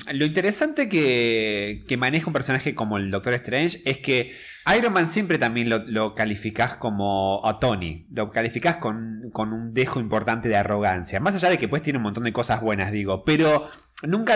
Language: Spanish